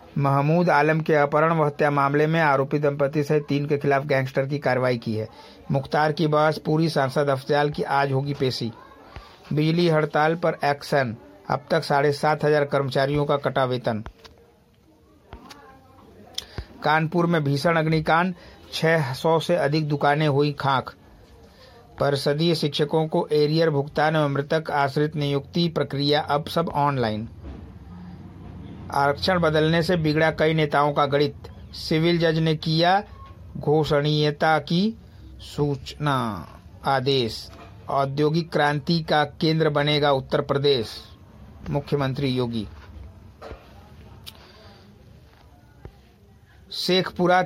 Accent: native